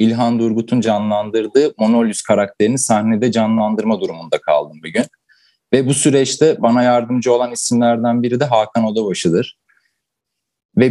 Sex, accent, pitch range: male, native, 100-125 Hz